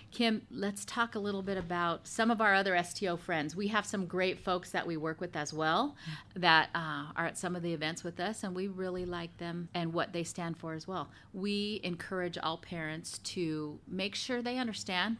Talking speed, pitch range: 215 wpm, 170-205 Hz